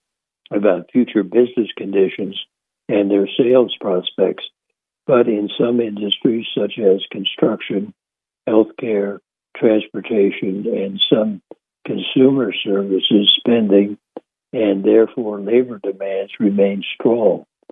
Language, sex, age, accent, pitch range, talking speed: English, male, 60-79, American, 100-115 Hz, 100 wpm